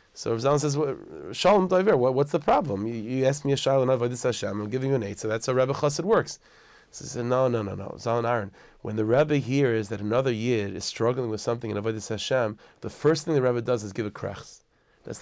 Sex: male